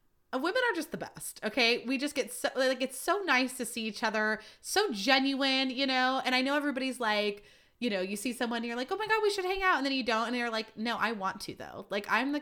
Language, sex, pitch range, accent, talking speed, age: English, female, 200-270 Hz, American, 275 wpm, 20-39